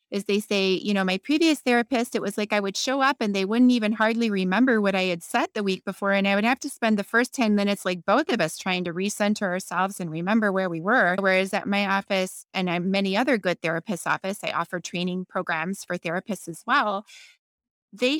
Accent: American